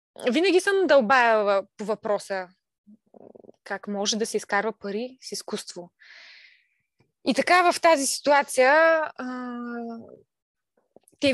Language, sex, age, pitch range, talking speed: Bulgarian, female, 20-39, 210-285 Hz, 110 wpm